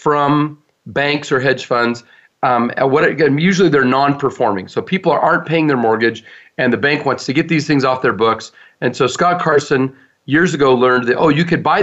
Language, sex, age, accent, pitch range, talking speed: English, male, 40-59, American, 135-180 Hz, 200 wpm